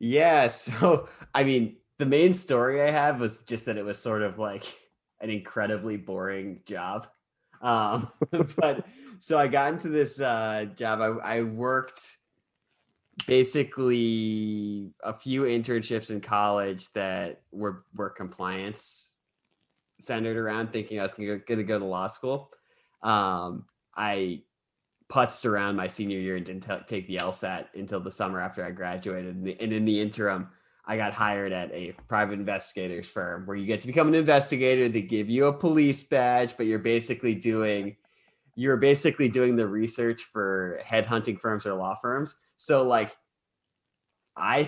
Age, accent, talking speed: 20-39, American, 160 wpm